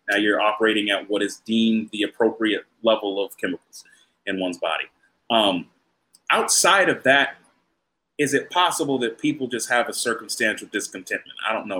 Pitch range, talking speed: 115-180 Hz, 165 wpm